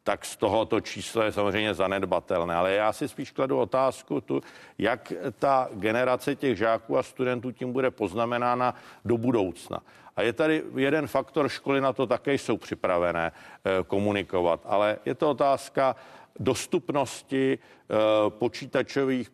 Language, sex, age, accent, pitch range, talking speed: Czech, male, 50-69, native, 105-130 Hz, 135 wpm